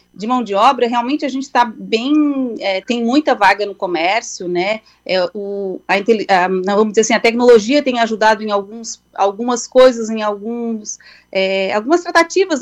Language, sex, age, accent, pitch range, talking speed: Portuguese, female, 30-49, Brazilian, 215-265 Hz, 170 wpm